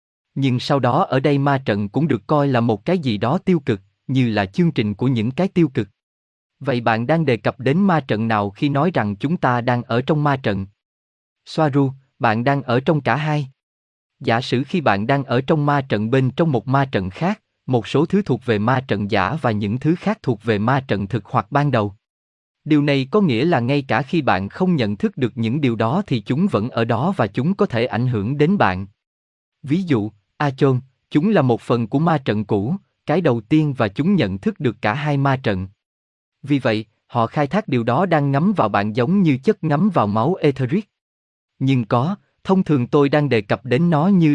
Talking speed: 225 wpm